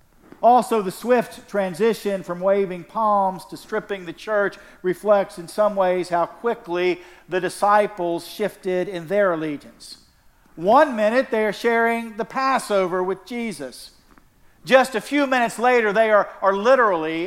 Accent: American